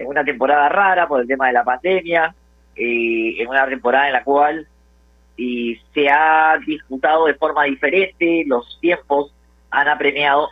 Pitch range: 105-145 Hz